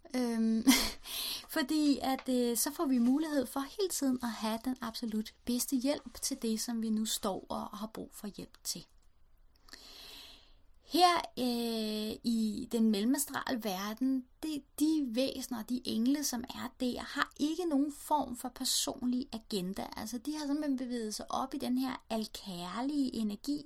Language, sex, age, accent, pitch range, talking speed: Danish, female, 30-49, native, 220-265 Hz, 160 wpm